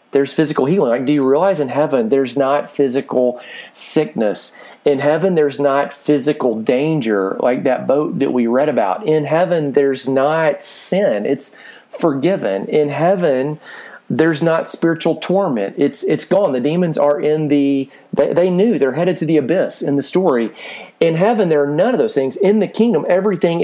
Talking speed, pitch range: 180 wpm, 120-160 Hz